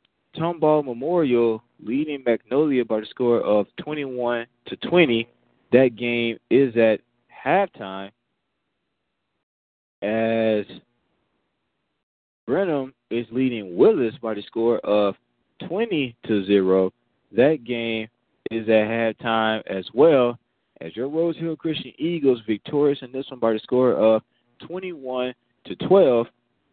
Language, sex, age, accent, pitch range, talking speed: English, male, 20-39, American, 105-135 Hz, 115 wpm